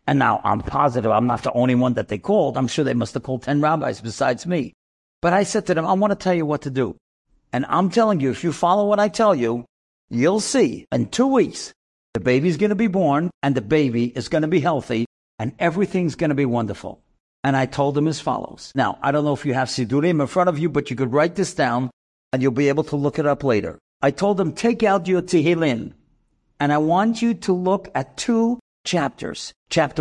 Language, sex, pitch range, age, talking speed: English, male, 135-210 Hz, 50-69, 240 wpm